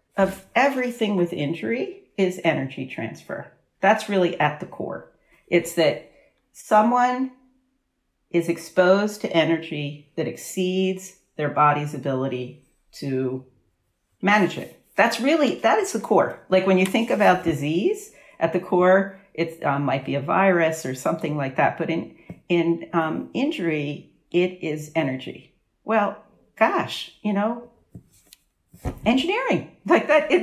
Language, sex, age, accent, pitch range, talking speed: English, female, 50-69, American, 160-210 Hz, 135 wpm